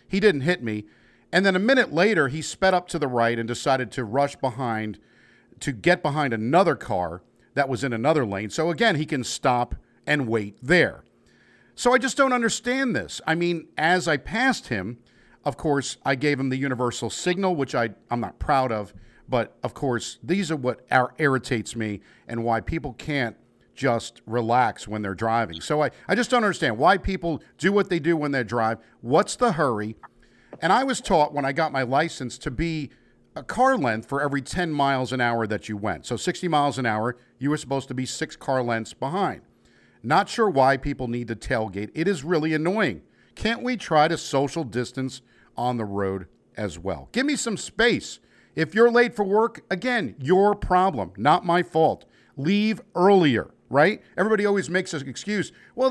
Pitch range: 120-180 Hz